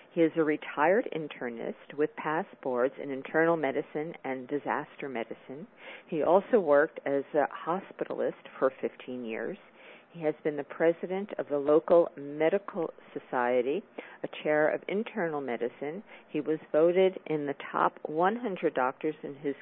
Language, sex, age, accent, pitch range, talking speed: English, female, 50-69, American, 145-190 Hz, 145 wpm